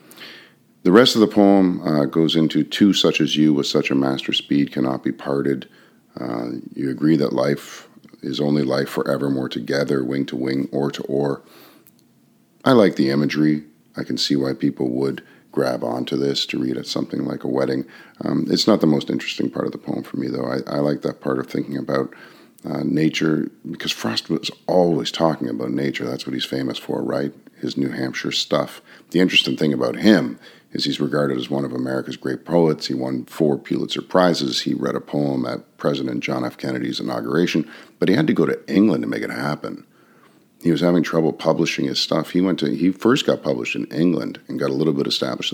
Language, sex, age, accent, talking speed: English, male, 40-59, American, 210 wpm